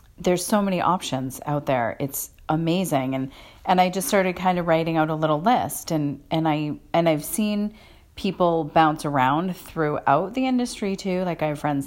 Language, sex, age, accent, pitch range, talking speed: English, female, 40-59, American, 150-185 Hz, 185 wpm